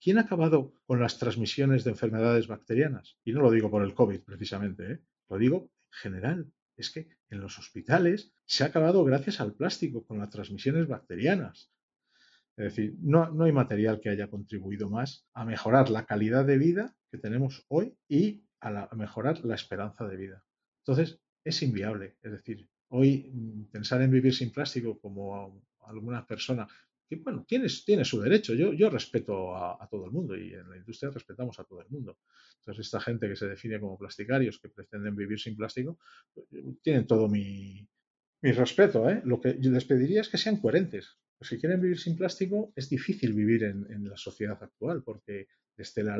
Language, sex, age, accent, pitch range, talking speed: Spanish, male, 40-59, Spanish, 105-145 Hz, 195 wpm